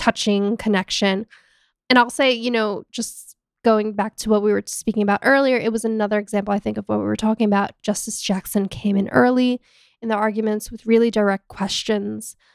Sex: female